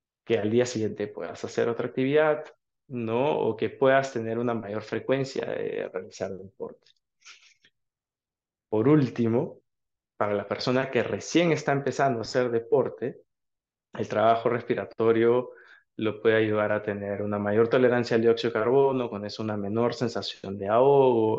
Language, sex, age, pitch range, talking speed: Spanish, male, 20-39, 110-130 Hz, 150 wpm